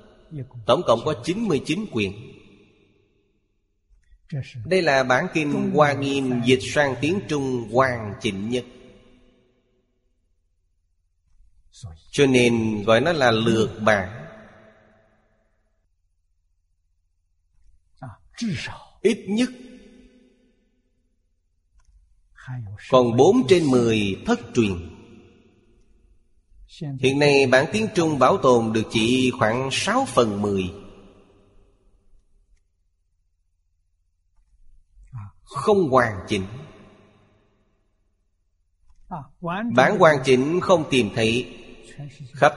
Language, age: Vietnamese, 30-49